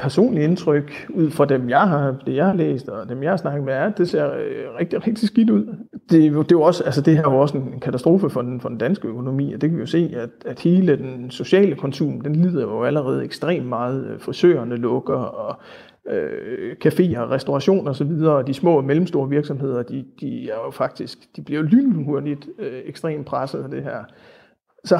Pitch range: 135-175 Hz